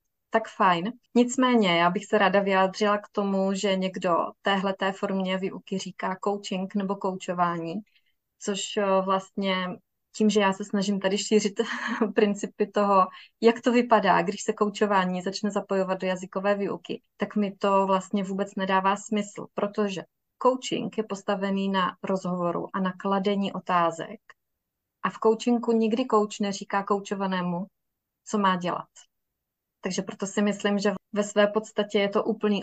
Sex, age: female, 20-39